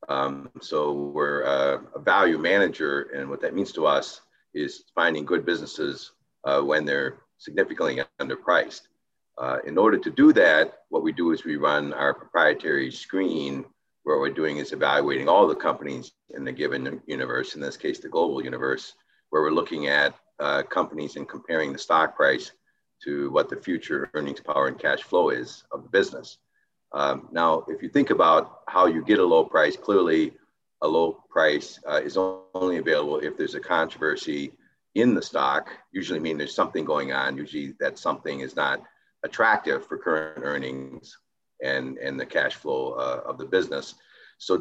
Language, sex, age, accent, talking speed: English, male, 50-69, American, 175 wpm